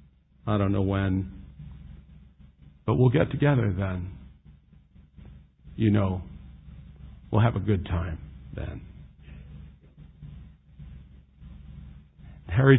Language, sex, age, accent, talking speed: English, male, 50-69, American, 85 wpm